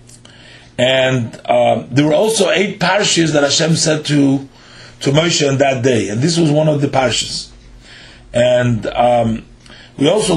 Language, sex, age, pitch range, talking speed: English, male, 40-59, 125-160 Hz, 155 wpm